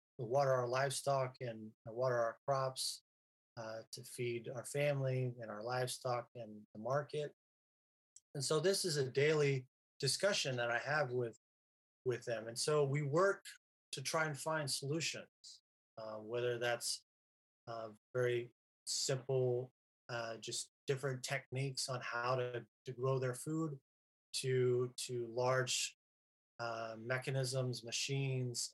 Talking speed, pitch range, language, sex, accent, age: 130 wpm, 120-135 Hz, English, male, American, 30-49